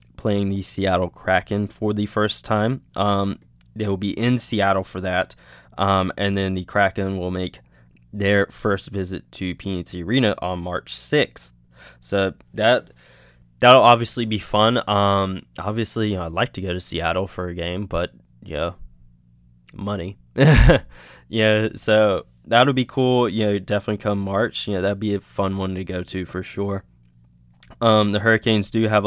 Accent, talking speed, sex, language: American, 175 wpm, male, English